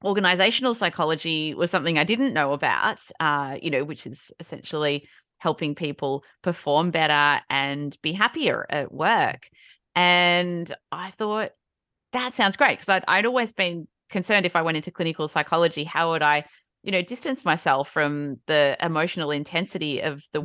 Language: English